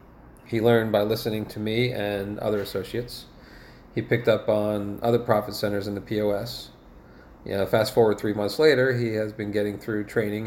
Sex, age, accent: male, 40-59, American